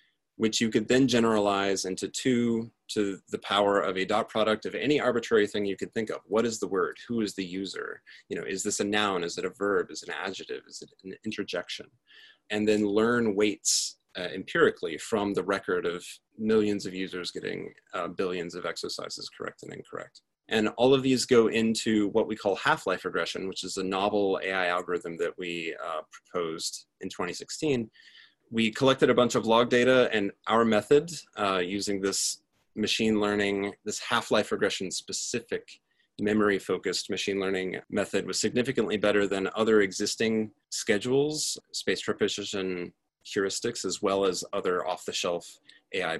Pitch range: 100-120 Hz